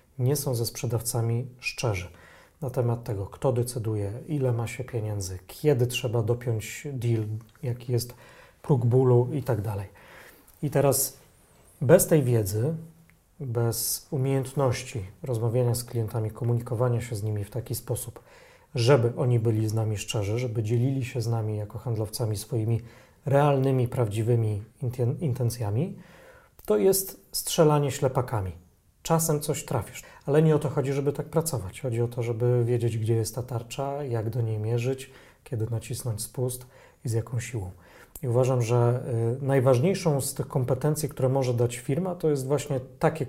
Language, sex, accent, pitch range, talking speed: Polish, male, native, 115-135 Hz, 150 wpm